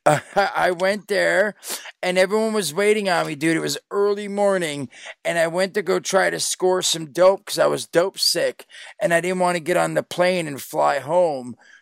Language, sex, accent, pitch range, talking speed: English, male, American, 150-195 Hz, 215 wpm